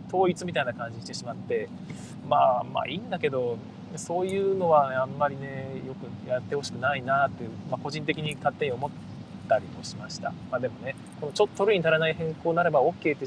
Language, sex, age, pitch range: Japanese, male, 20-39, 140-190 Hz